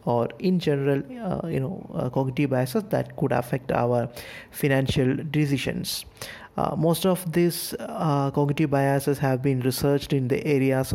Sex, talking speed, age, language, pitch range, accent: male, 155 wpm, 20-39, English, 130-150 Hz, Indian